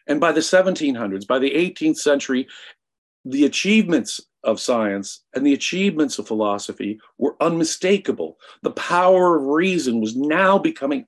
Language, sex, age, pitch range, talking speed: English, male, 50-69, 130-200 Hz, 140 wpm